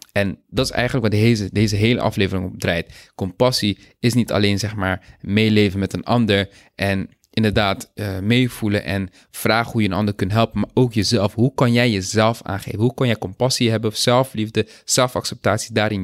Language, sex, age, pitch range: Dutch, male, 20-39, 105-135 Hz